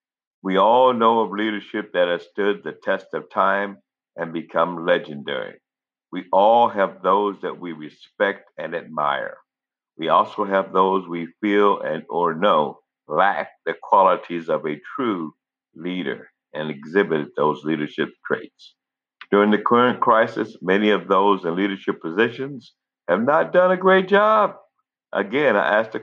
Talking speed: 150 wpm